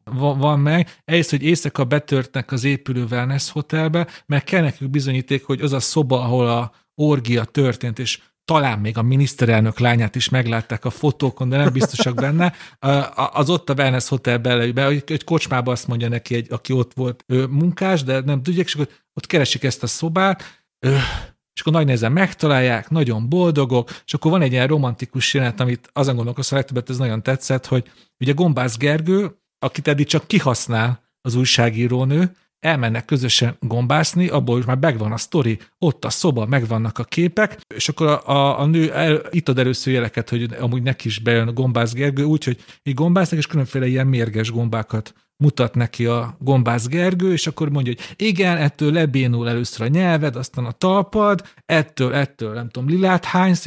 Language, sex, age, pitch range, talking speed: Hungarian, male, 40-59, 125-155 Hz, 175 wpm